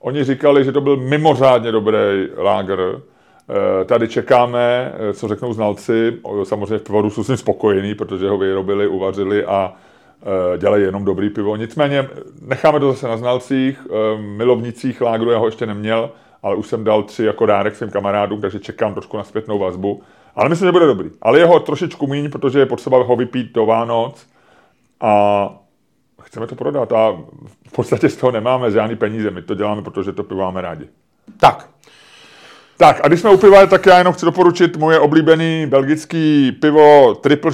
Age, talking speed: 30-49, 175 wpm